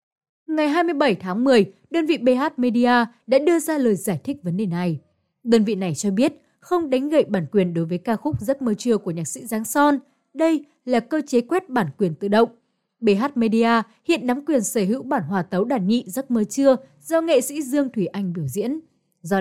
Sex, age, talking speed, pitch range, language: female, 20-39, 225 wpm, 200-275 Hz, Vietnamese